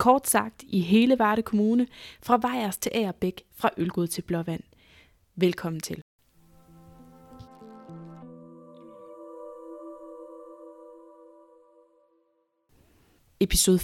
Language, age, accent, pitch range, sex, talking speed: Danish, 20-39, native, 160-220 Hz, female, 75 wpm